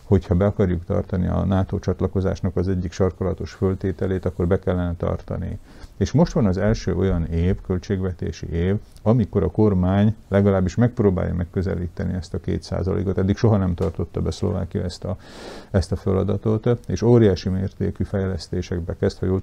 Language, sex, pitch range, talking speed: Hungarian, male, 90-100 Hz, 150 wpm